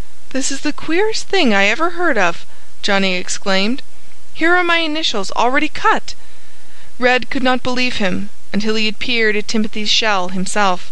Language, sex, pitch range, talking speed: English, female, 190-240 Hz, 165 wpm